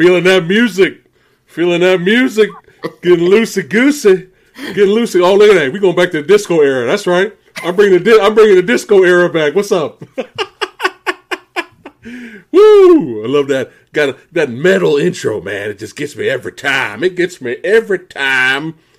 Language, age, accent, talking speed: English, 40-59, American, 165 wpm